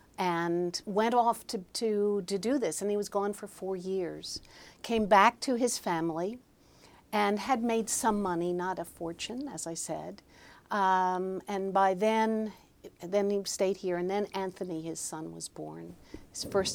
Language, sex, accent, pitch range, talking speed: English, female, American, 165-205 Hz, 170 wpm